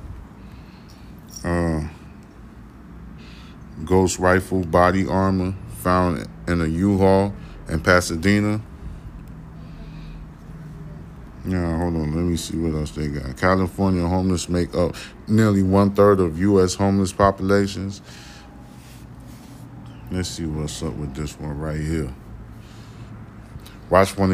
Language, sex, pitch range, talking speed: English, male, 80-100 Hz, 105 wpm